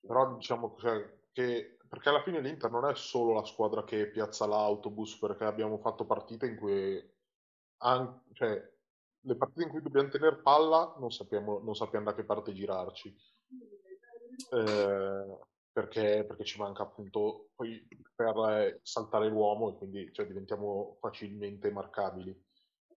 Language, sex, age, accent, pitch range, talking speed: Italian, male, 20-39, native, 105-120 Hz, 140 wpm